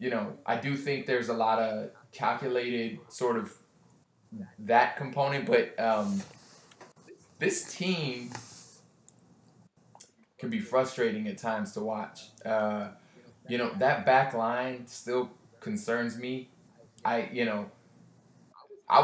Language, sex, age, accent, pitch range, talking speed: English, male, 20-39, American, 115-140 Hz, 120 wpm